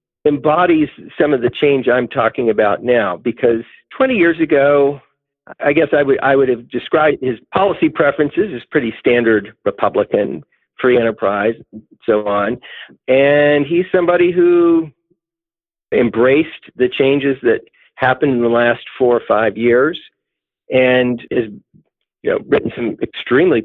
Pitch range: 115-150 Hz